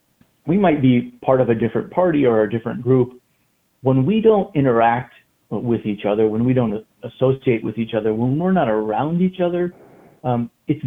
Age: 40-59